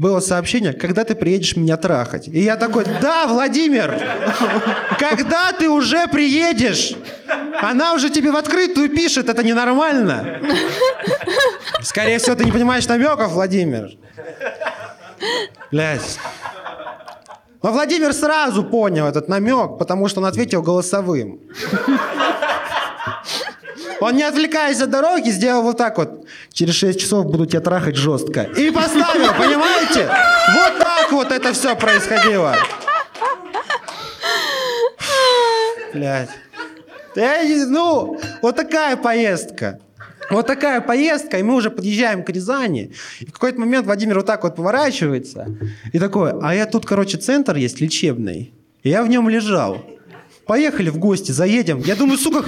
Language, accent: Russian, native